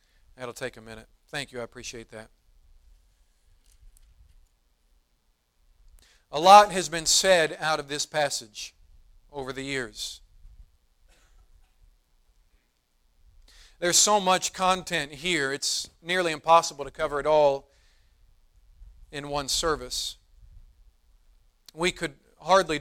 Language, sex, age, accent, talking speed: English, male, 40-59, American, 105 wpm